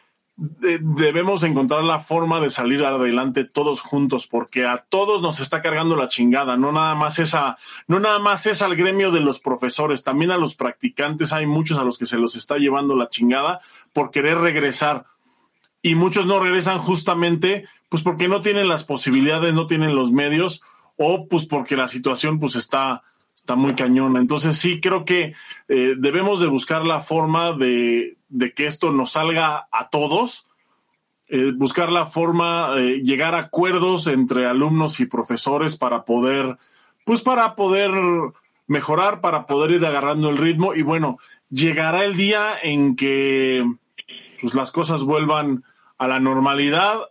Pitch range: 135-180 Hz